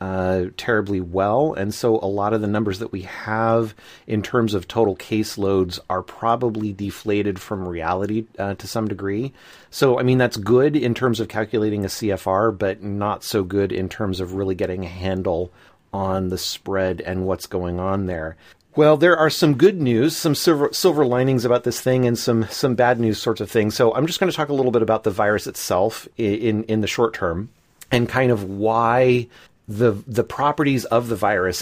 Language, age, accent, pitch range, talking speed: English, 30-49, American, 100-125 Hz, 205 wpm